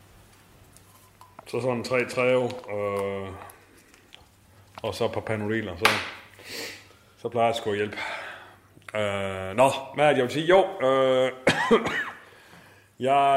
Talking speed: 115 wpm